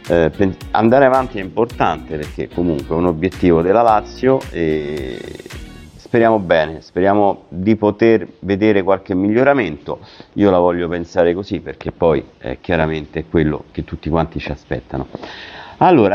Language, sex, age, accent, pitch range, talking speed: Italian, male, 50-69, native, 80-100 Hz, 135 wpm